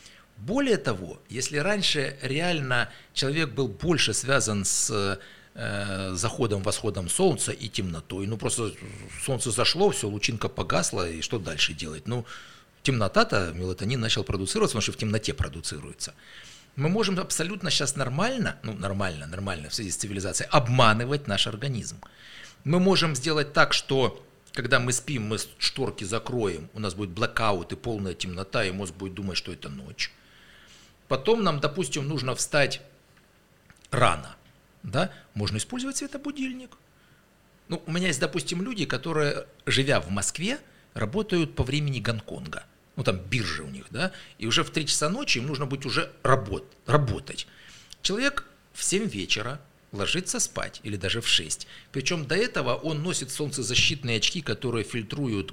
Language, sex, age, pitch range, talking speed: Russian, male, 60-79, 100-150 Hz, 145 wpm